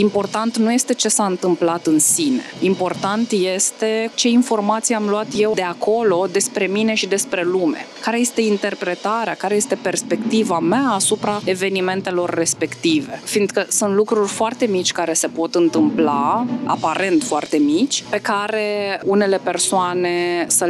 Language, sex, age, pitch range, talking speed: Romanian, female, 20-39, 175-220 Hz, 140 wpm